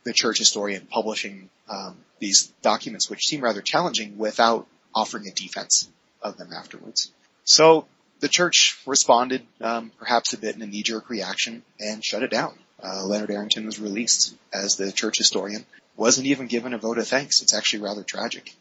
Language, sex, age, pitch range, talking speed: English, male, 30-49, 105-120 Hz, 175 wpm